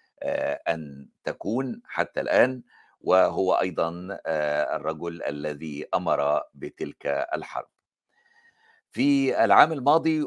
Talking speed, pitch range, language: 80 wpm, 85-120 Hz, Arabic